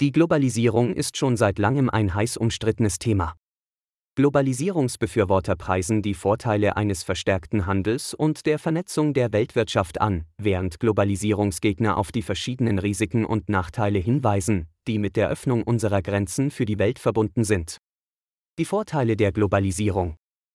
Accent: German